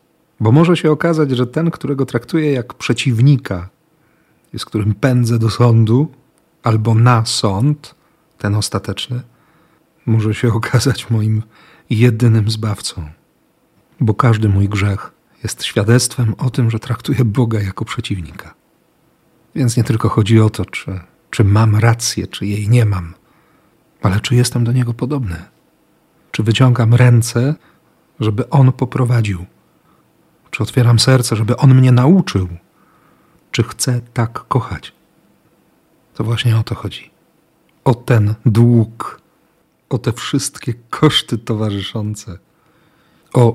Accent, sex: native, male